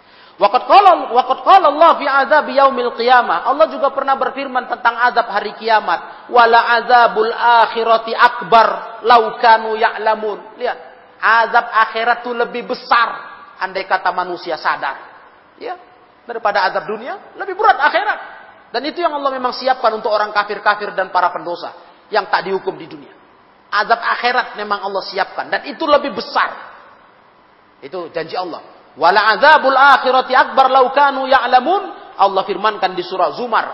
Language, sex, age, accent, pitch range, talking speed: Indonesian, male, 40-59, native, 205-285 Hz, 120 wpm